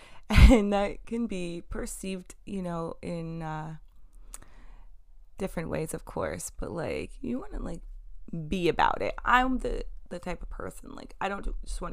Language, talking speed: English, 170 wpm